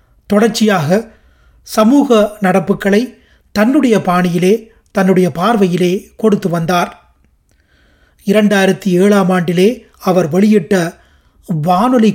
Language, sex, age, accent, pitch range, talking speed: Tamil, male, 30-49, native, 180-215 Hz, 75 wpm